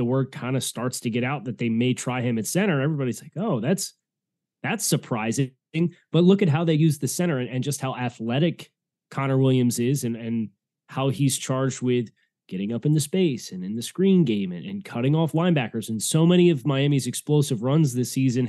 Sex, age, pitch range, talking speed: male, 20-39, 125-160 Hz, 220 wpm